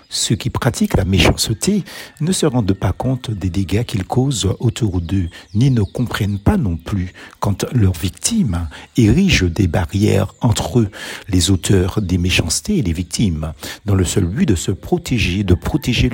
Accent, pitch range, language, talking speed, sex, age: French, 95-135 Hz, French, 170 wpm, male, 60-79